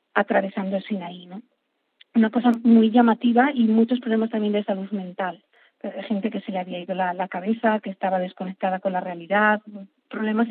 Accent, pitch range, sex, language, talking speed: Spanish, 200-230 Hz, female, Spanish, 170 wpm